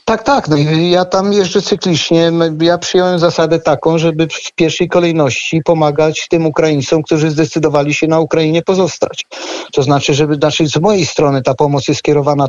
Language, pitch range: Polish, 140-165 Hz